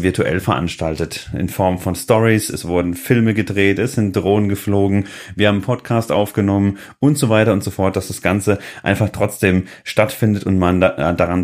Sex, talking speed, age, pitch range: male, 185 wpm, 30-49, 100-125 Hz